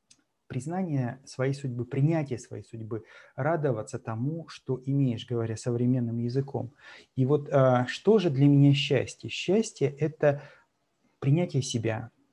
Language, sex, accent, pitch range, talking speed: Russian, male, native, 120-140 Hz, 115 wpm